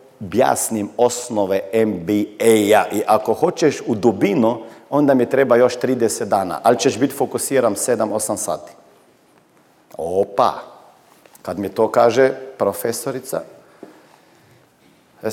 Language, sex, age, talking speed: Croatian, male, 40-59, 105 wpm